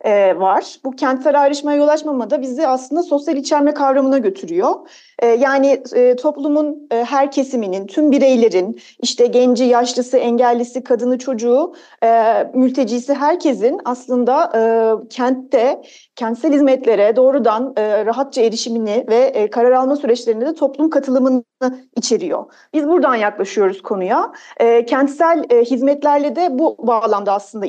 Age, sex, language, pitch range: 40-59, female, Turkish, 240-295 Hz